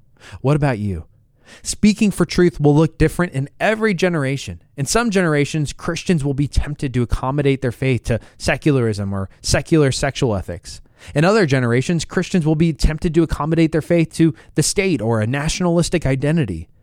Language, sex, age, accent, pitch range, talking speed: English, male, 20-39, American, 110-165 Hz, 170 wpm